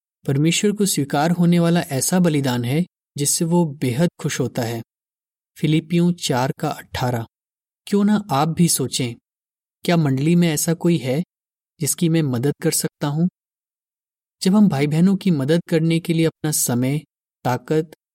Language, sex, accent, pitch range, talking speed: Hindi, male, native, 130-175 Hz, 155 wpm